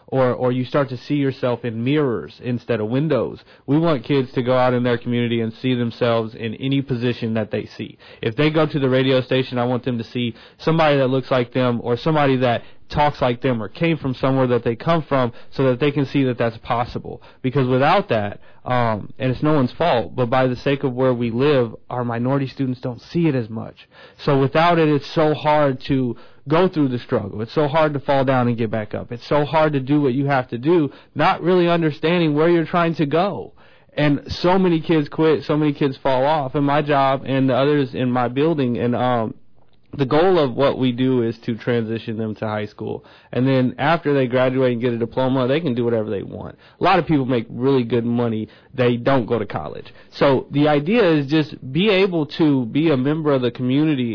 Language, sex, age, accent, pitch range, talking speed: English, male, 30-49, American, 120-150 Hz, 230 wpm